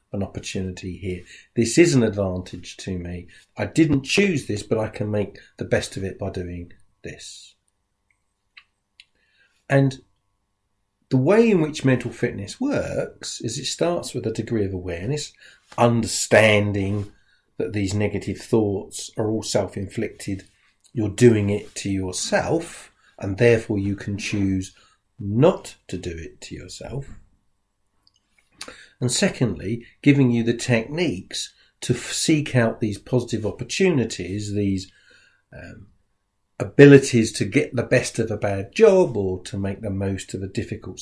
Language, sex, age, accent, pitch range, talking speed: English, male, 50-69, British, 100-120 Hz, 140 wpm